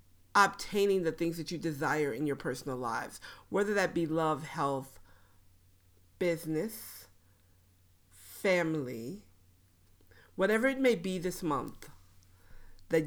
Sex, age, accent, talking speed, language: female, 50-69, American, 110 wpm, English